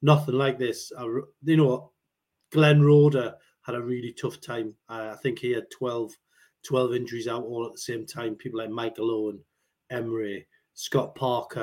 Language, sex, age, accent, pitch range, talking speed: English, male, 30-49, British, 125-145 Hz, 175 wpm